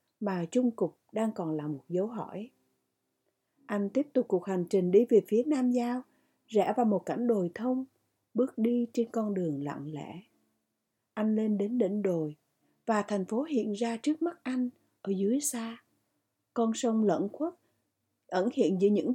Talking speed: 180 wpm